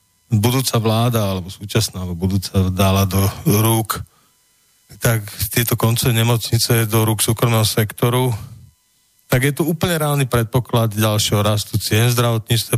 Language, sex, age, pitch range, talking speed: Slovak, male, 40-59, 105-120 Hz, 125 wpm